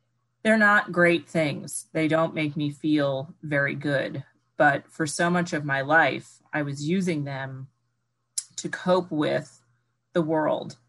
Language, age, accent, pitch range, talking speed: English, 30-49, American, 130-160 Hz, 150 wpm